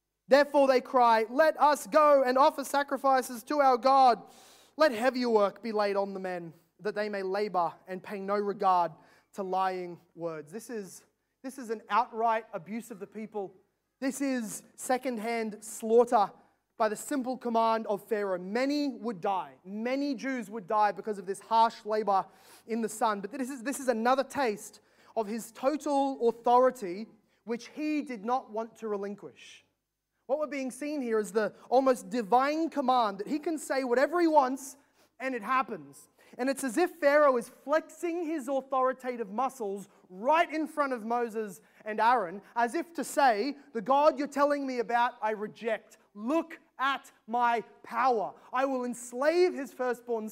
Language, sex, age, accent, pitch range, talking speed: English, male, 20-39, Australian, 215-270 Hz, 170 wpm